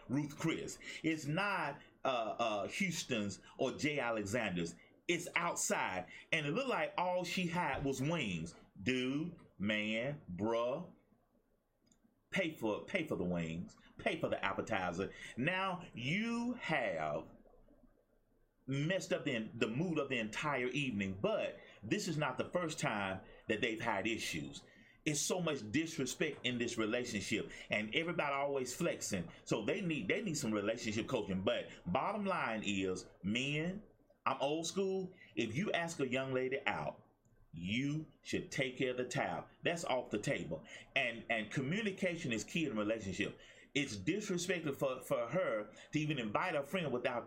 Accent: American